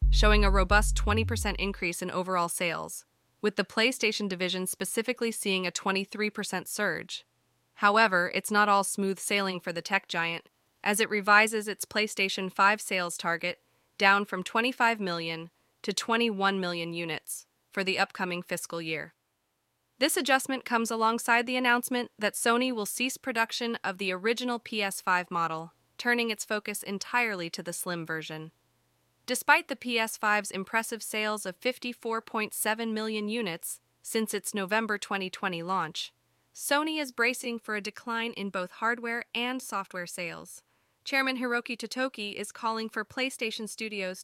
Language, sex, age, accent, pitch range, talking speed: English, female, 20-39, American, 185-230 Hz, 145 wpm